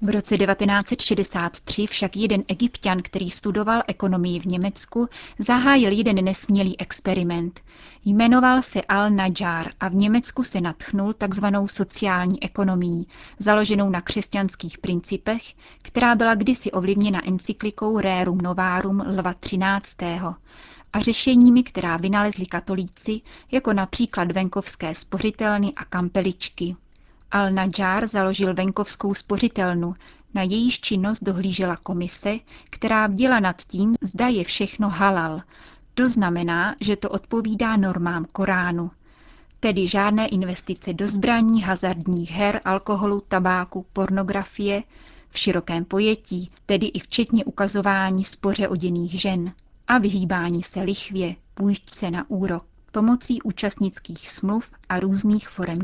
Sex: female